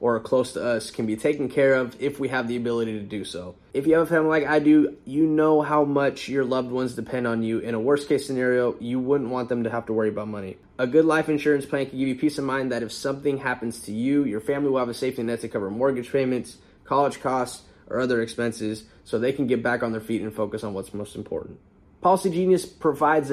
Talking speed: 255 wpm